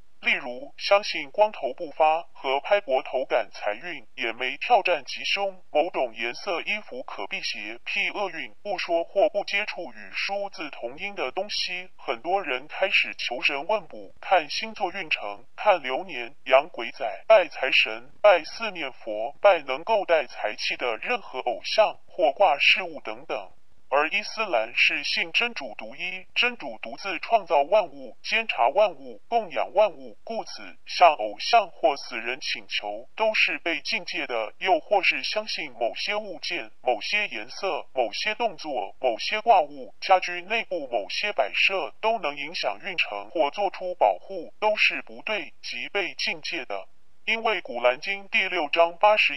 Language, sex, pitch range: Chinese, female, 145-220 Hz